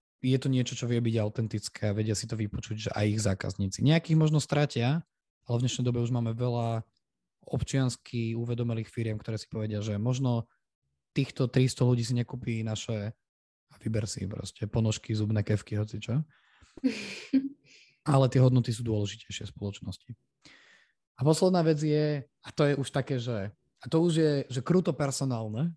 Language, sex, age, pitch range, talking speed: Slovak, male, 20-39, 105-130 Hz, 170 wpm